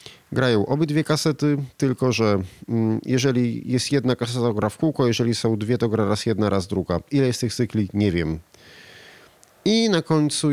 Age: 40-59